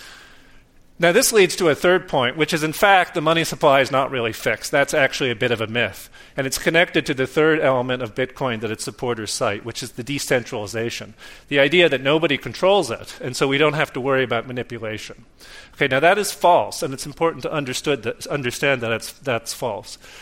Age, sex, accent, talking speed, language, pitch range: 40-59, male, American, 215 wpm, English, 125-155 Hz